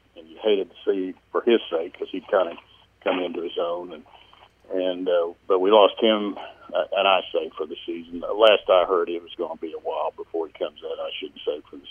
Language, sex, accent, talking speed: English, male, American, 250 wpm